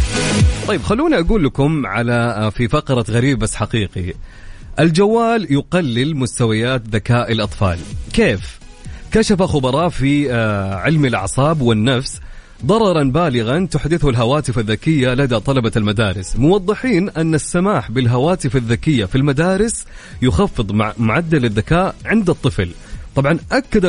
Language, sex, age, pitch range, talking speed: English, male, 30-49, 115-165 Hz, 110 wpm